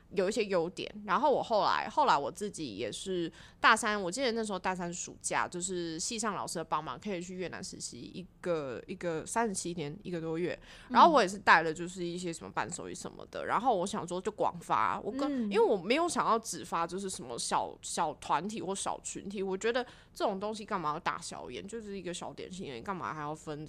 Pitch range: 170-220 Hz